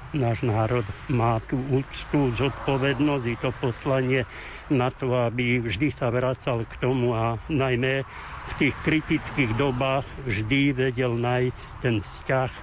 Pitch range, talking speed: 120-135 Hz, 140 wpm